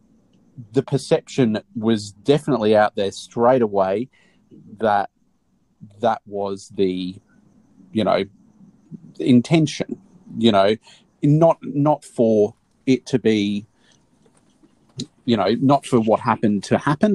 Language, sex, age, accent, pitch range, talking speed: English, male, 30-49, Australian, 100-130 Hz, 110 wpm